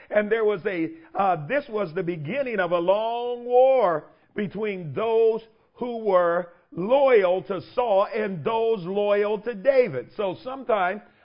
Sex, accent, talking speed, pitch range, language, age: male, American, 145 wpm, 140-225 Hz, English, 50-69